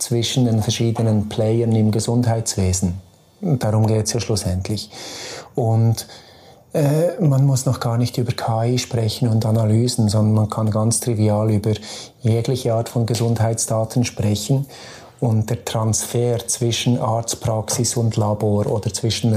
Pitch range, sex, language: 110-125 Hz, male, German